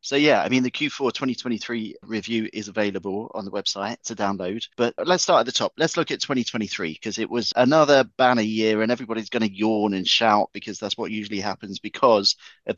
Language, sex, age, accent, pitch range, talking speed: English, male, 30-49, British, 95-120 Hz, 210 wpm